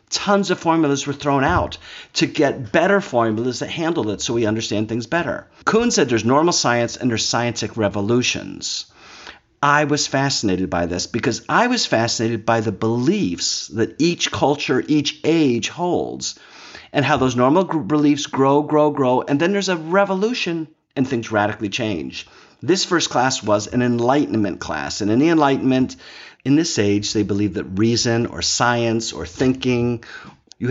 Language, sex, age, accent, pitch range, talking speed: English, male, 50-69, American, 105-145 Hz, 170 wpm